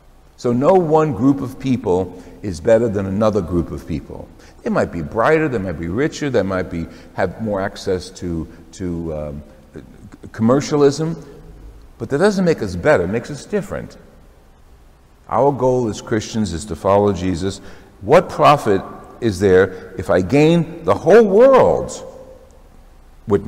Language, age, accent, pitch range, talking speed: English, 60-79, American, 85-125 Hz, 155 wpm